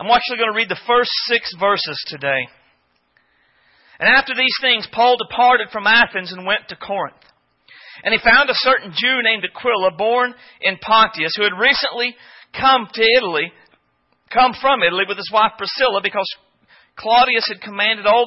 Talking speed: 170 wpm